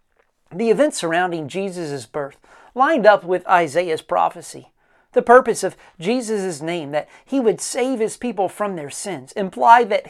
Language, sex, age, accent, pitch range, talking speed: English, male, 40-59, American, 165-235 Hz, 155 wpm